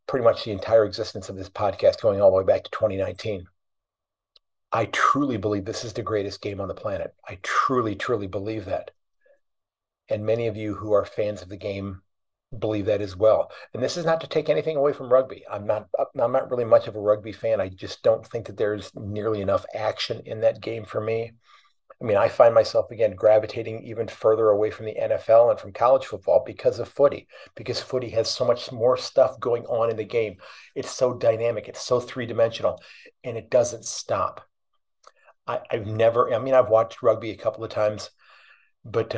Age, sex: 40-59, male